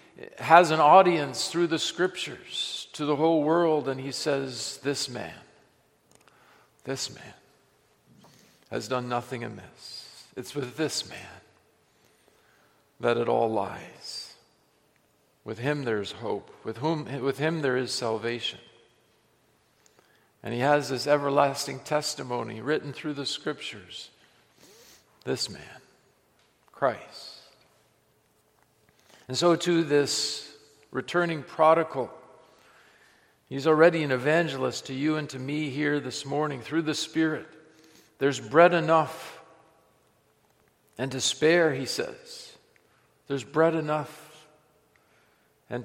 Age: 50-69